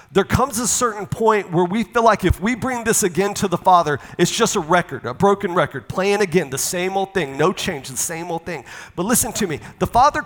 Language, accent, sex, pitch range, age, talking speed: English, American, male, 160-210 Hz, 40-59, 245 wpm